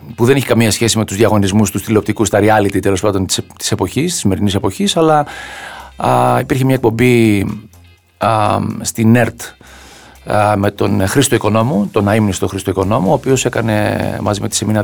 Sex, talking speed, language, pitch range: male, 165 wpm, Greek, 105-125 Hz